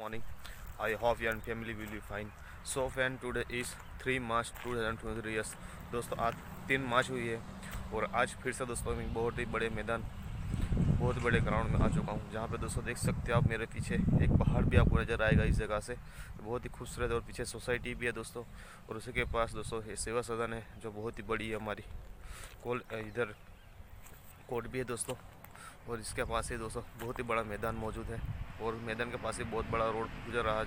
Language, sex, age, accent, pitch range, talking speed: English, male, 20-39, Indian, 110-120 Hz, 105 wpm